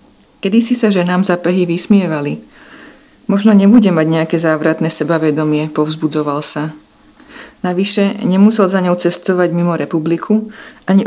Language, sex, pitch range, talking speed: Slovak, female, 160-200 Hz, 120 wpm